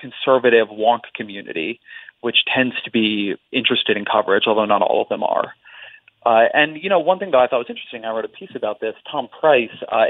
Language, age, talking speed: English, 30-49, 210 wpm